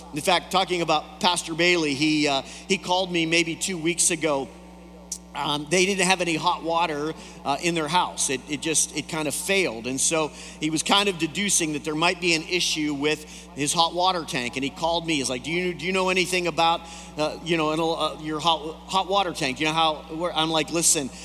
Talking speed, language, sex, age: 225 wpm, English, male, 40-59